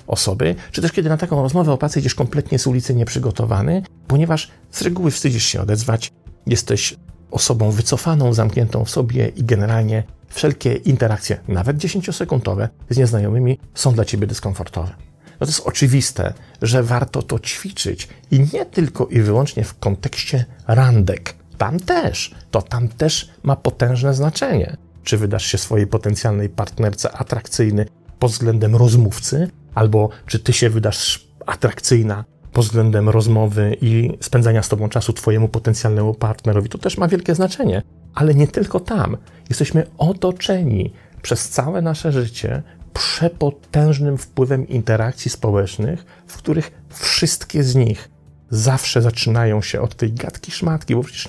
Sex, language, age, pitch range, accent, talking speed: male, Polish, 40-59, 110-140 Hz, native, 140 wpm